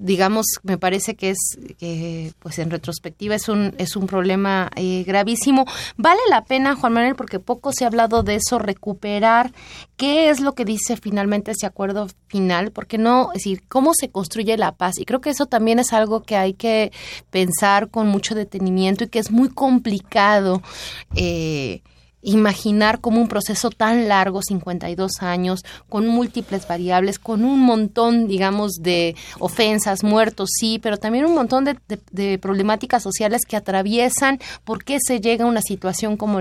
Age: 30-49